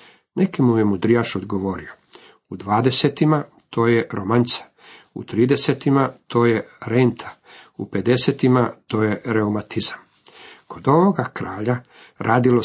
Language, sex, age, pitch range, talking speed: Croatian, male, 50-69, 110-130 Hz, 110 wpm